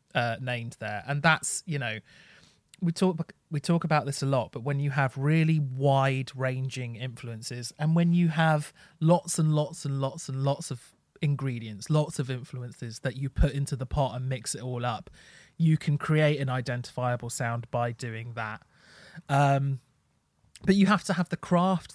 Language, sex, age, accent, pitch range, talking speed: English, male, 30-49, British, 125-155 Hz, 185 wpm